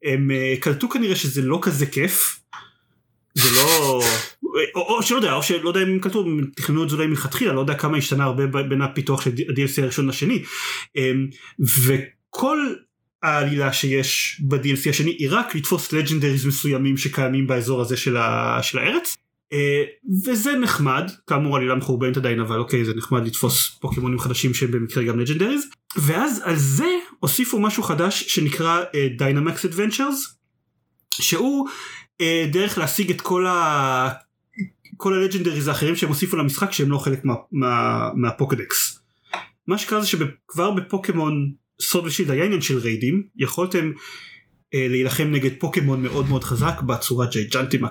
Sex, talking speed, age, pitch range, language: male, 145 wpm, 30-49, 135-185 Hz, Hebrew